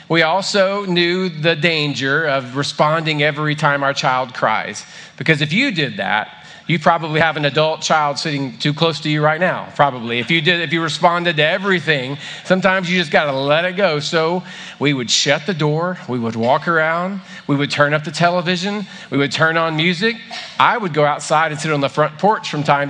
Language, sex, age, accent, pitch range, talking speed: English, male, 40-59, American, 145-185 Hz, 205 wpm